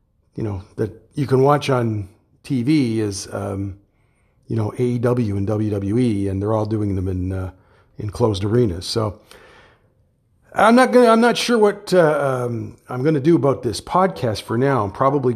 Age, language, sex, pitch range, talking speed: 50-69, English, male, 100-125 Hz, 185 wpm